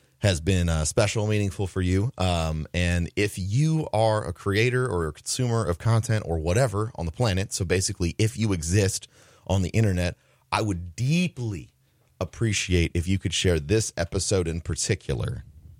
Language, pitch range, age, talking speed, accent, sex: English, 75-100 Hz, 30-49, 165 wpm, American, male